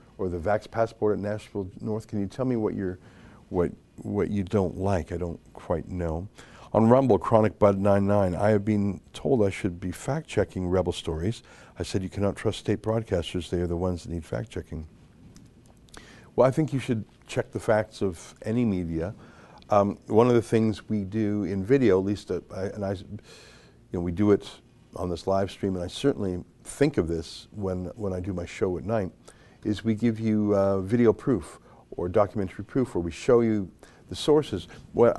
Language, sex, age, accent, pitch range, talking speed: English, male, 50-69, American, 95-110 Hz, 200 wpm